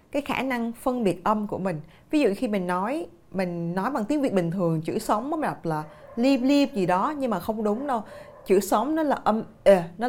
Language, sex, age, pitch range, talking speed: Vietnamese, female, 20-39, 170-240 Hz, 240 wpm